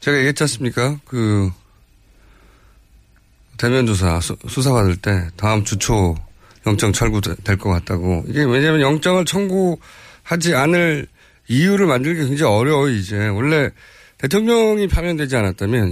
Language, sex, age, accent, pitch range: Korean, male, 40-59, native, 105-165 Hz